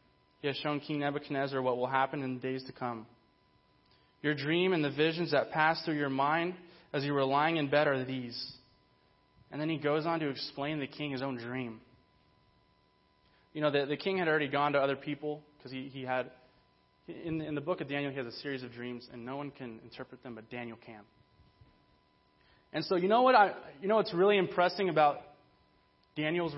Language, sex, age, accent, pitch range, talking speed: English, male, 20-39, American, 135-170 Hz, 210 wpm